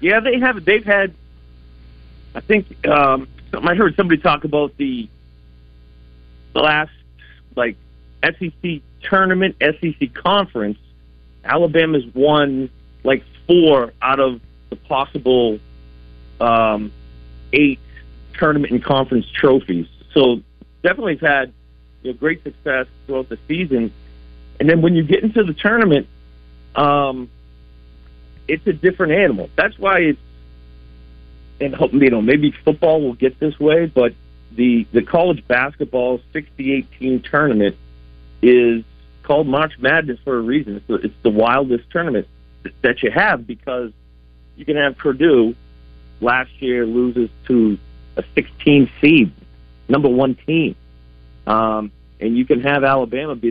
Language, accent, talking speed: English, American, 125 wpm